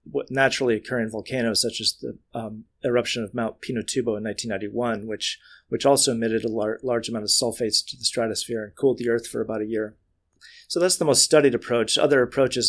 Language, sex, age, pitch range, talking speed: English, male, 30-49, 110-125 Hz, 200 wpm